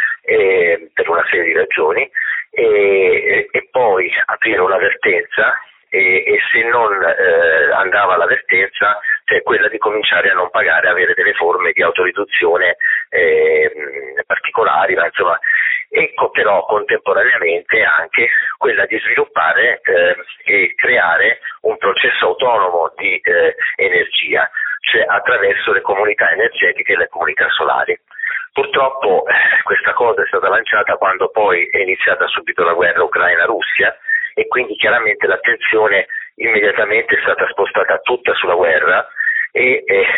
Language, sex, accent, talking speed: Italian, male, native, 130 wpm